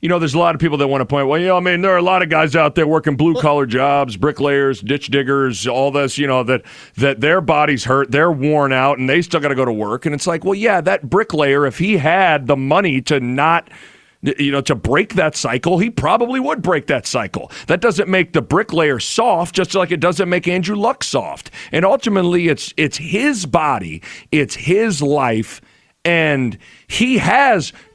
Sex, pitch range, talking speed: male, 135-185 Hz, 220 wpm